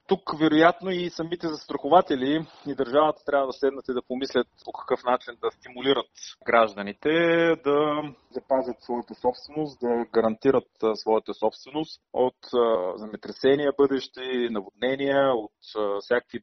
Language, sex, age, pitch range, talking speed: Bulgarian, male, 30-49, 115-140 Hz, 120 wpm